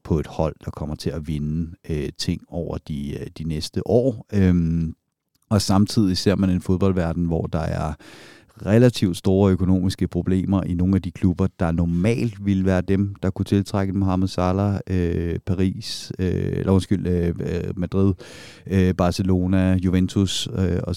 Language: Danish